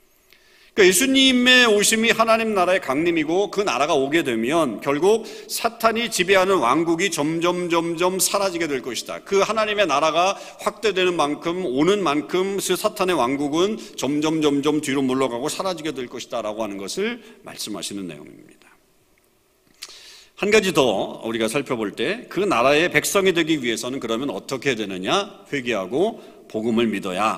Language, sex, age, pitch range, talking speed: English, male, 40-59, 145-240 Hz, 120 wpm